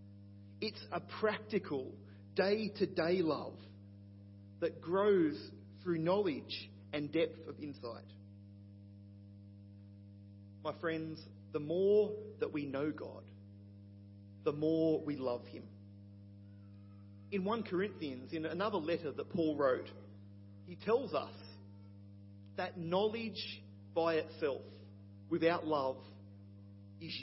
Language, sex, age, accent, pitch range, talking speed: English, male, 40-59, Australian, 100-160 Hz, 100 wpm